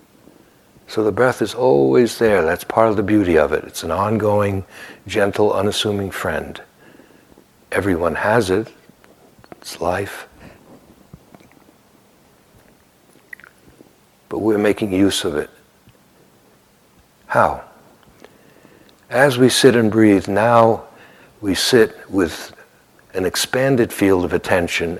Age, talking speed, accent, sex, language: 60-79, 110 wpm, American, male, English